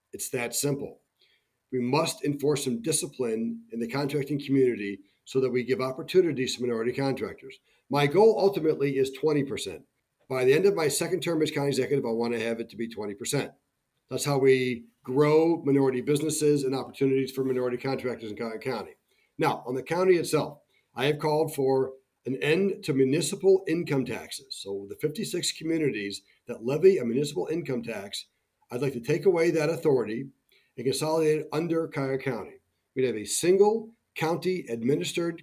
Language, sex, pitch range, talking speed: English, male, 130-165 Hz, 170 wpm